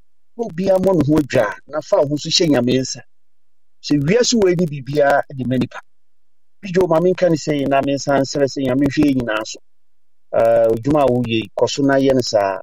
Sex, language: male, English